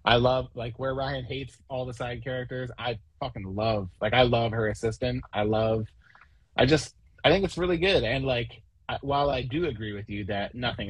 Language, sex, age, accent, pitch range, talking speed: English, male, 20-39, American, 105-130 Hz, 205 wpm